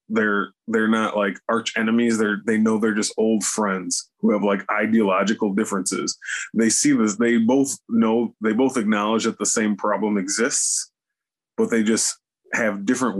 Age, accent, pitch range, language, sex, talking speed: 20-39, American, 100-120 Hz, English, male, 170 wpm